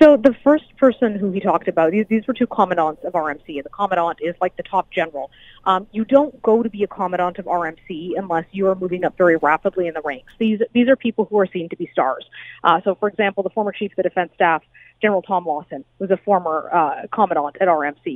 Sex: female